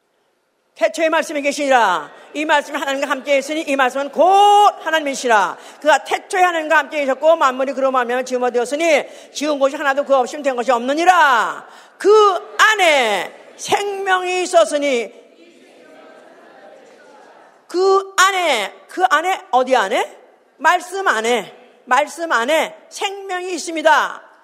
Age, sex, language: 50-69, female, Korean